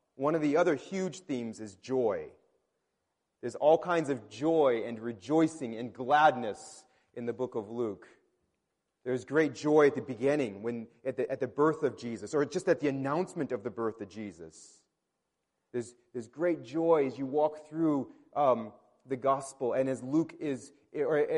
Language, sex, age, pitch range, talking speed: English, male, 30-49, 135-190 Hz, 175 wpm